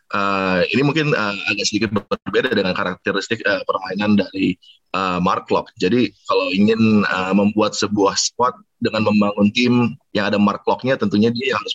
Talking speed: 165 wpm